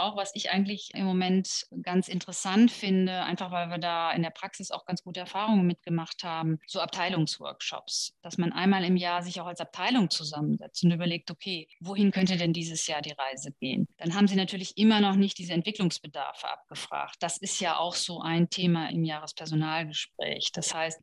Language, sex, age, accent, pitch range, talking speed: German, female, 30-49, German, 165-195 Hz, 190 wpm